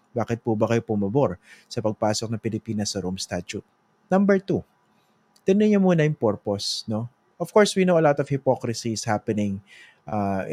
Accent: Filipino